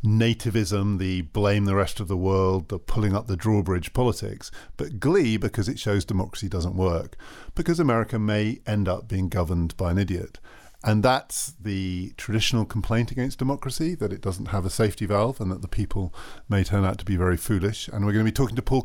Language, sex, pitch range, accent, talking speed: English, male, 95-115 Hz, British, 205 wpm